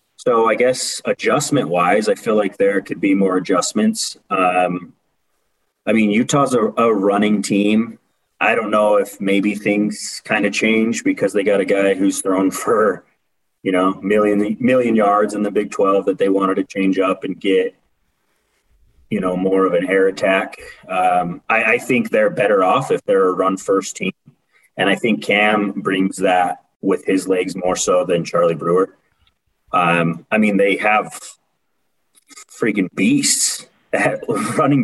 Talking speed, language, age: 165 wpm, English, 30-49